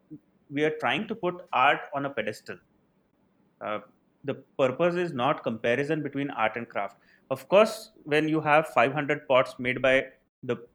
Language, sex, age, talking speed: English, male, 30-49, 160 wpm